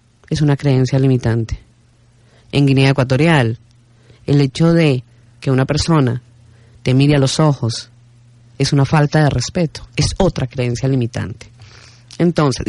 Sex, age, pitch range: female, 30-49, 120-170 Hz